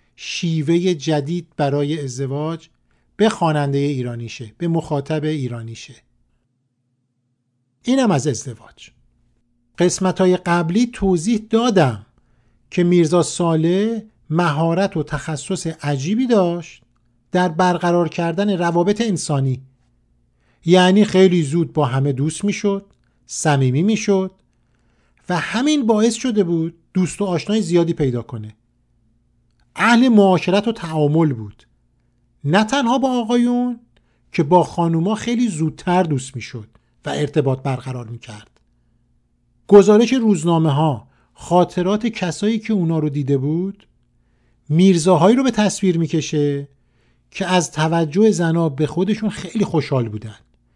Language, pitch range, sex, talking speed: Persian, 140-195 Hz, male, 110 wpm